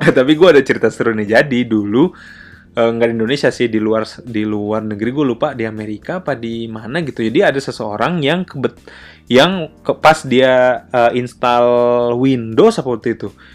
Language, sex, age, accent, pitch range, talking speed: Indonesian, male, 20-39, native, 110-150 Hz, 180 wpm